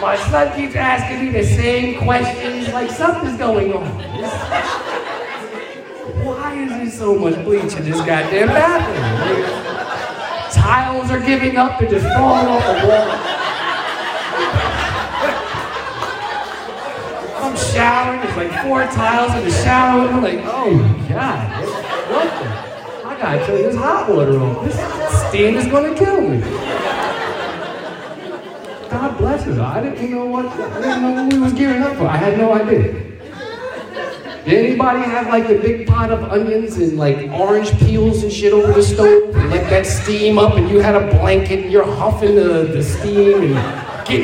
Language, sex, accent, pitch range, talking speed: English, male, American, 155-265 Hz, 165 wpm